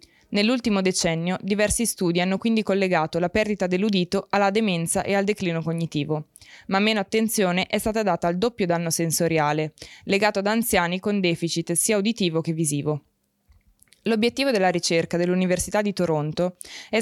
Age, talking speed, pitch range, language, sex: 20-39, 150 wpm, 175-210 Hz, Italian, female